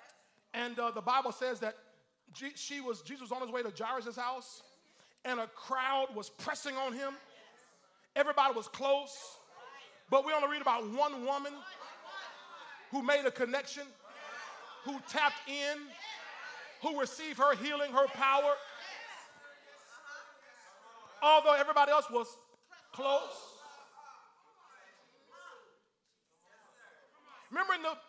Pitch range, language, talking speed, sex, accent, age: 275-330 Hz, English, 110 wpm, male, American, 40-59